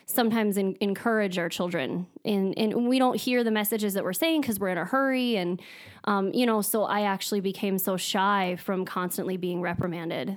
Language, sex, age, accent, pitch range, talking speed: English, female, 20-39, American, 180-210 Hz, 195 wpm